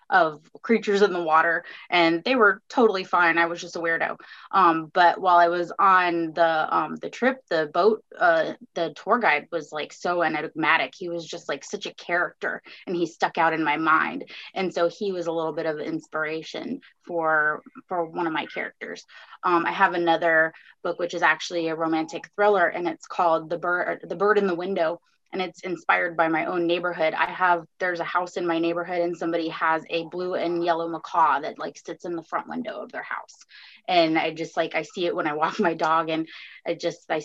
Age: 20-39